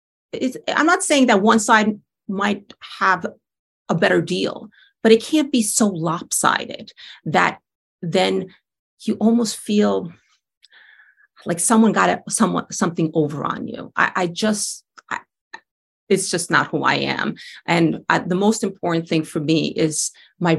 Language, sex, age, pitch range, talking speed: English, female, 40-59, 180-235 Hz, 150 wpm